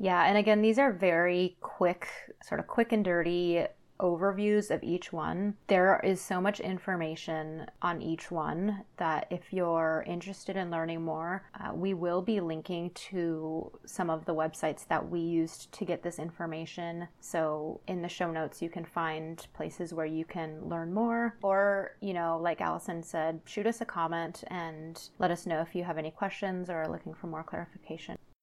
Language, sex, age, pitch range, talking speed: English, female, 20-39, 165-195 Hz, 185 wpm